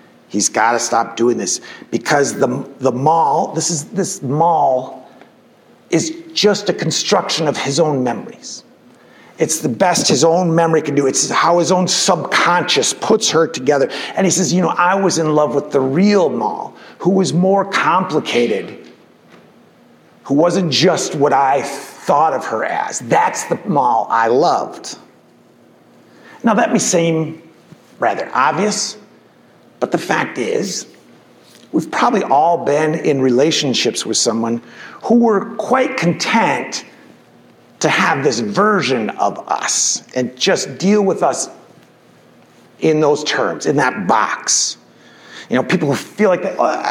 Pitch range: 150-205 Hz